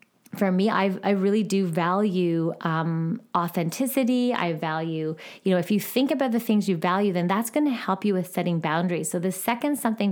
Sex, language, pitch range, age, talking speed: female, English, 170-215 Hz, 20-39, 195 wpm